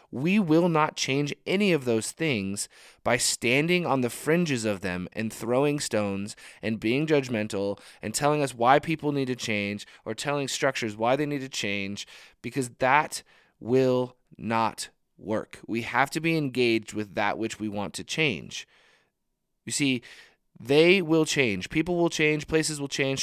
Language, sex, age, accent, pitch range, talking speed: English, male, 20-39, American, 105-140 Hz, 170 wpm